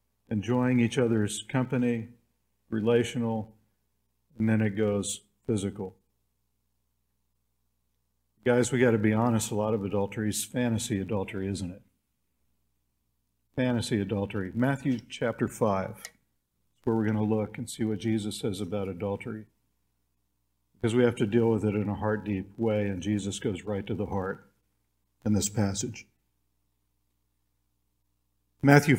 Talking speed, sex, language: 135 wpm, male, English